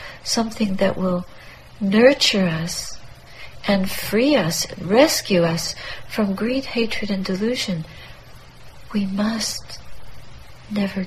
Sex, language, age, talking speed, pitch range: female, English, 60-79, 100 wpm, 170-210 Hz